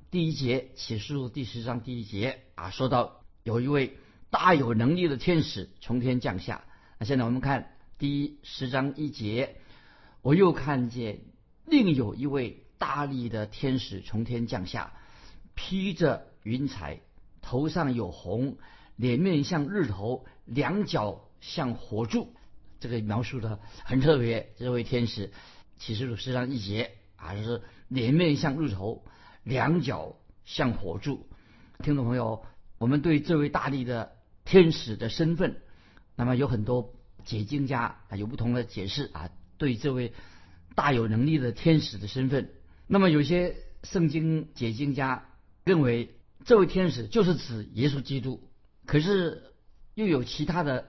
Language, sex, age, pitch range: Chinese, male, 50-69, 115-145 Hz